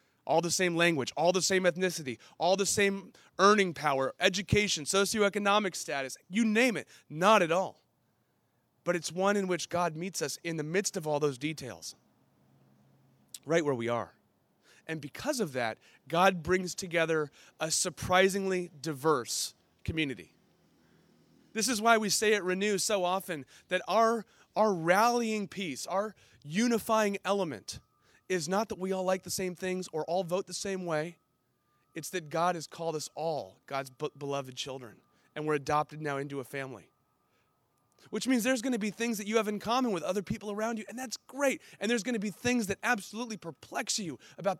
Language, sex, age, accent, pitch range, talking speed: English, male, 30-49, American, 150-200 Hz, 175 wpm